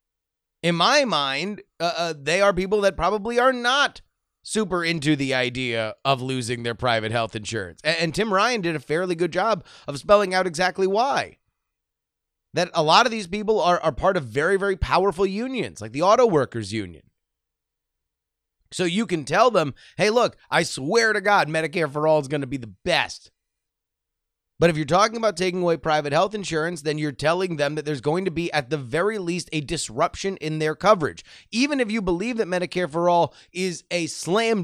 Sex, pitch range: male, 130-185 Hz